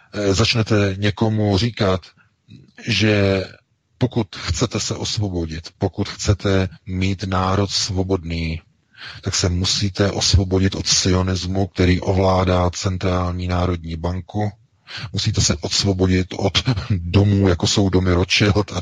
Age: 40-59